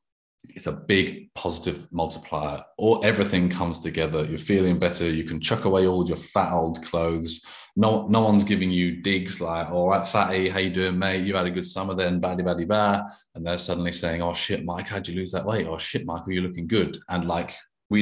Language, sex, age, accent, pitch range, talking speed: English, male, 30-49, British, 85-95 Hz, 220 wpm